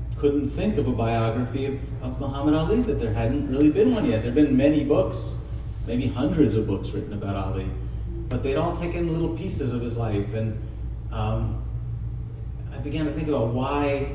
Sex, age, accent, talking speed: male, 40-59, American, 190 wpm